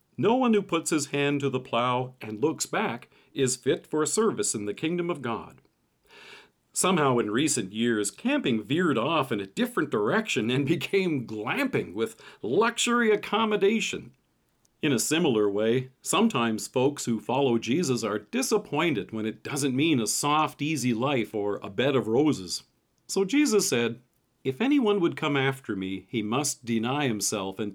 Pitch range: 115-170 Hz